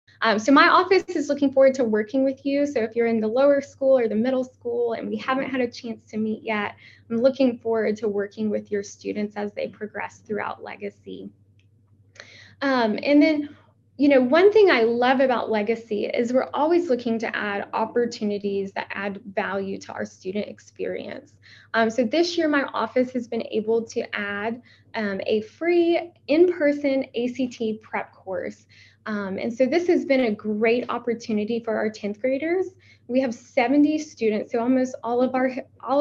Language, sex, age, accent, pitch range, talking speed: English, female, 10-29, American, 215-270 Hz, 185 wpm